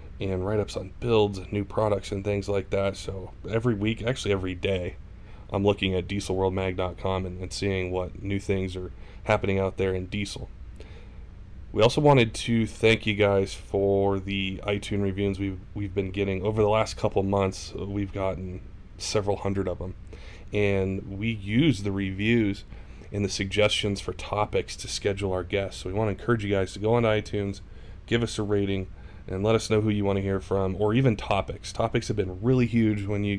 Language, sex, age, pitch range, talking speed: English, male, 30-49, 95-105 Hz, 195 wpm